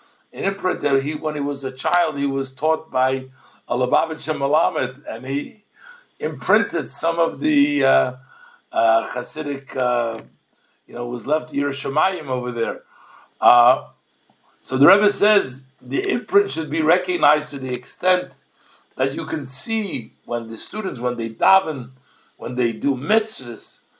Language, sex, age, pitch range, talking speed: English, male, 60-79, 130-190 Hz, 145 wpm